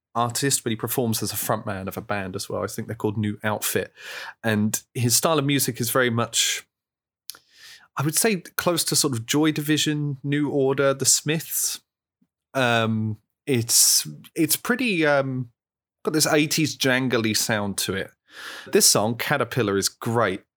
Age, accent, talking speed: 30-49, British, 165 wpm